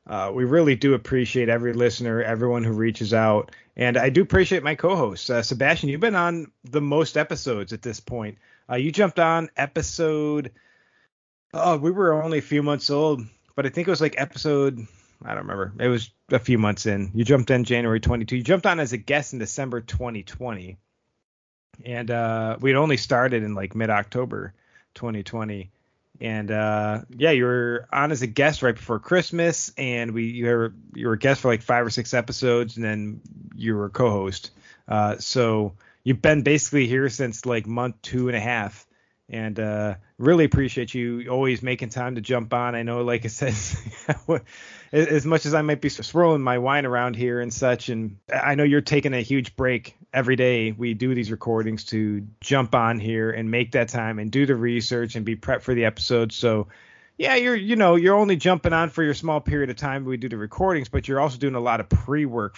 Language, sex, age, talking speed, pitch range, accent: English, male, 30-49, 200 wpm, 115-140 Hz, American